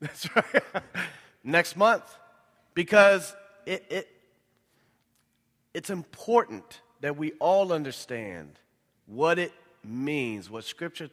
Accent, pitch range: American, 135-195 Hz